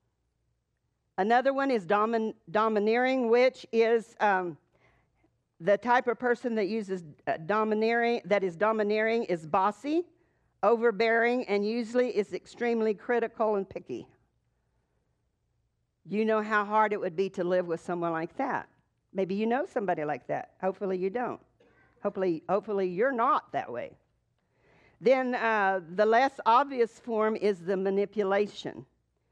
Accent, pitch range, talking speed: American, 195-235 Hz, 130 wpm